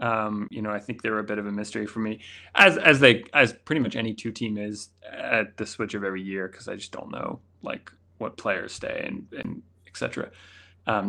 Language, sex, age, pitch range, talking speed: English, male, 20-39, 95-120 Hz, 240 wpm